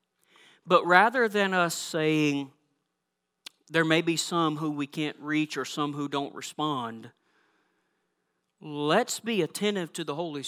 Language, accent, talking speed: English, American, 140 wpm